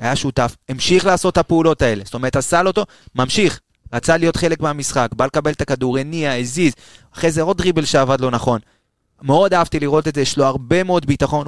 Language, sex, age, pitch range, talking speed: Hebrew, male, 20-39, 120-150 Hz, 210 wpm